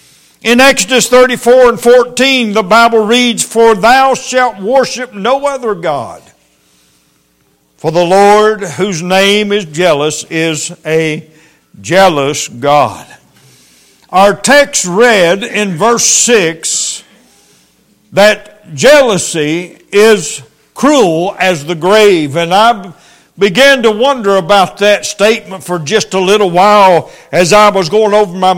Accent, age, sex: American, 60-79, male